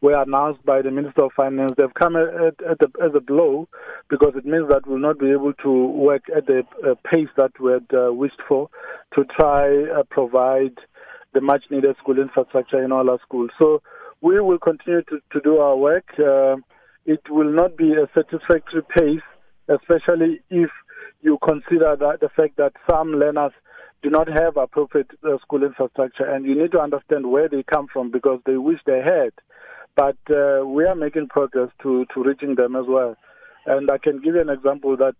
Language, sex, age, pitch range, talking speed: English, male, 50-69, 135-160 Hz, 200 wpm